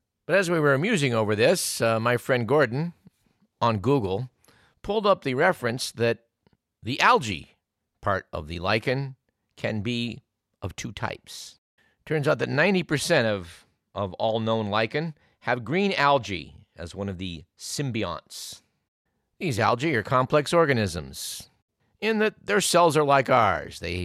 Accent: American